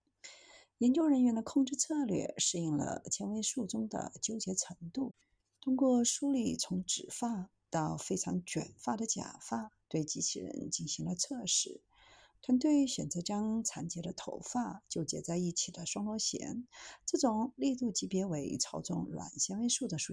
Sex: female